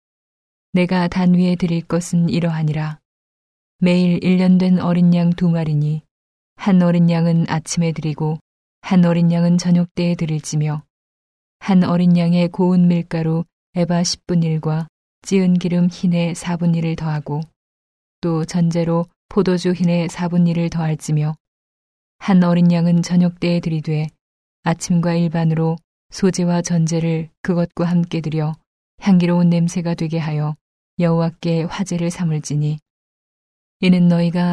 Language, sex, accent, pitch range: Korean, female, native, 160-175 Hz